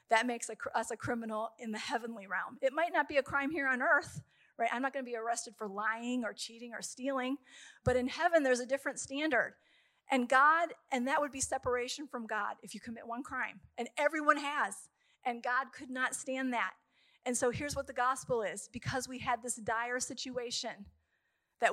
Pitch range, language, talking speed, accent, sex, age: 230-280 Hz, English, 205 wpm, American, female, 40-59